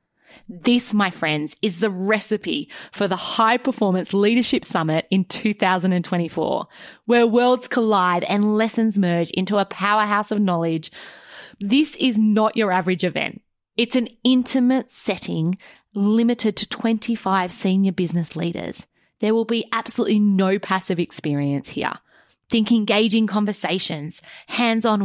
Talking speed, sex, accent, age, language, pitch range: 125 wpm, female, Australian, 20-39, English, 185-230 Hz